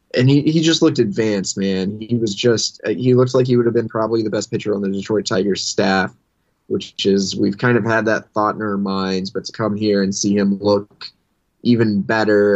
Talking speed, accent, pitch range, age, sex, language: 235 wpm, American, 100-125 Hz, 20-39, male, English